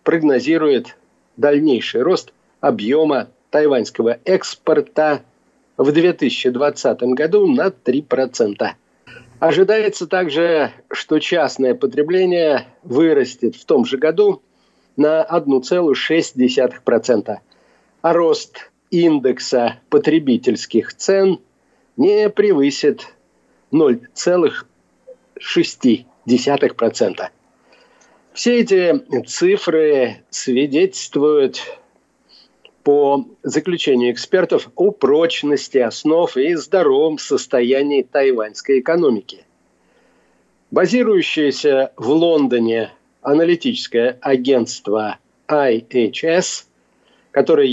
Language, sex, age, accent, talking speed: Russian, male, 50-69, native, 65 wpm